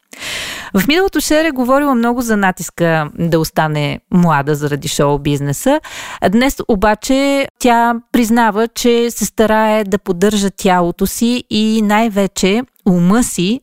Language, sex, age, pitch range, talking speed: Bulgarian, female, 40-59, 180-235 Hz, 125 wpm